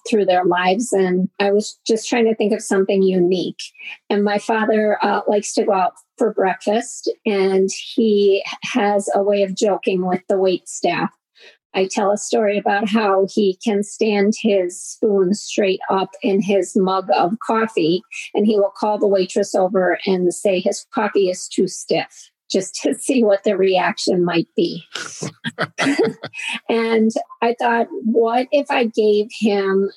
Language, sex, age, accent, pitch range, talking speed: English, female, 40-59, American, 195-225 Hz, 165 wpm